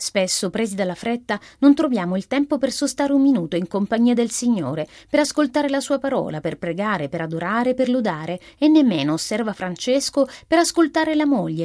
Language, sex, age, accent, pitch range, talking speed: Italian, female, 30-49, native, 180-270 Hz, 180 wpm